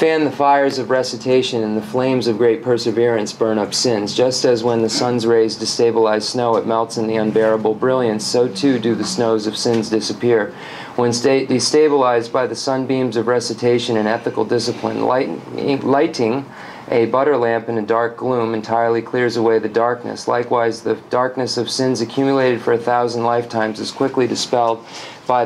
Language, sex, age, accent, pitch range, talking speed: English, male, 40-59, American, 110-125 Hz, 170 wpm